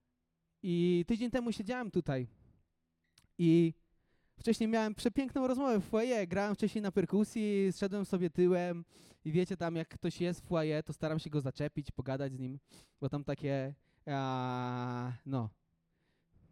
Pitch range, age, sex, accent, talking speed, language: 120-195 Hz, 20-39, male, native, 140 wpm, Polish